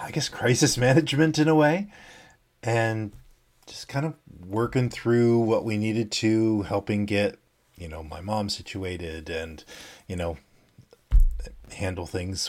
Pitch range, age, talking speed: 95-120 Hz, 40-59, 140 wpm